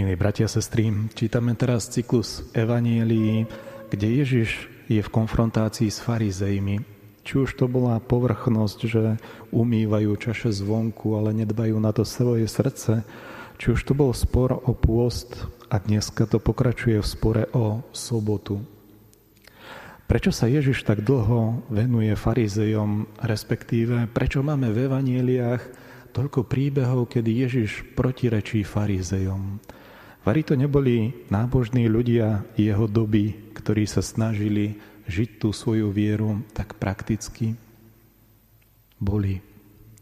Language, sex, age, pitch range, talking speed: Slovak, male, 30-49, 105-125 Hz, 120 wpm